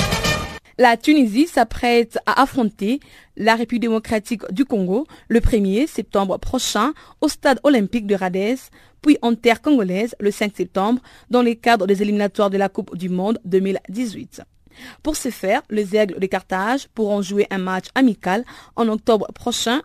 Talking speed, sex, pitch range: 155 wpm, female, 200-250 Hz